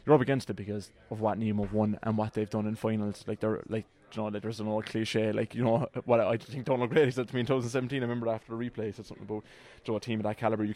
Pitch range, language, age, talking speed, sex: 105-120 Hz, English, 20-39, 310 wpm, male